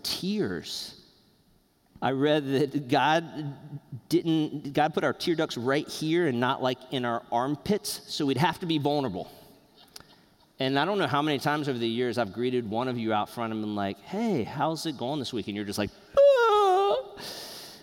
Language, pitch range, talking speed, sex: English, 120-170 Hz, 190 wpm, male